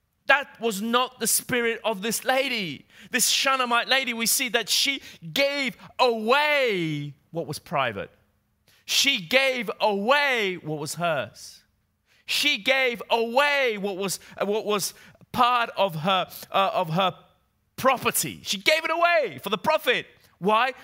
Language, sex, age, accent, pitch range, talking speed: Italian, male, 30-49, British, 125-205 Hz, 140 wpm